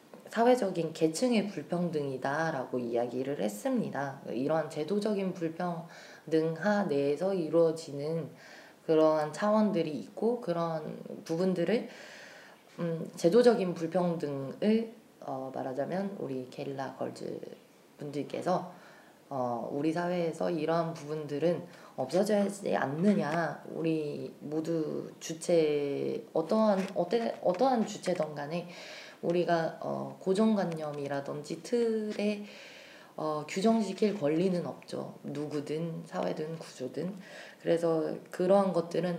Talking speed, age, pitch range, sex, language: 80 wpm, 20-39, 150-195 Hz, female, English